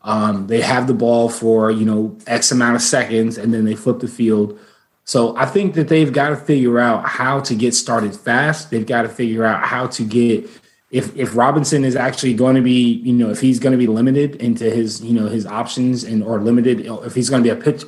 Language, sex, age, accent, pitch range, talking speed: English, male, 20-39, American, 115-140 Hz, 240 wpm